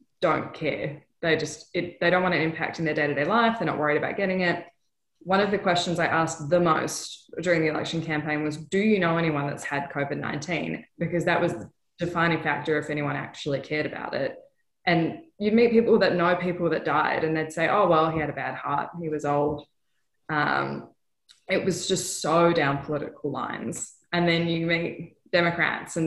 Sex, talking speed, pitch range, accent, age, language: female, 200 wpm, 150-175 Hz, Australian, 20-39, English